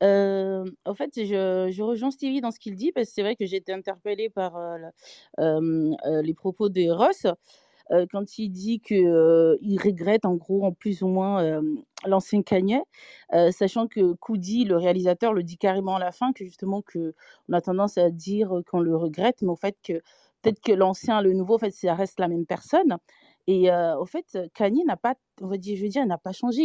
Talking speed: 220 wpm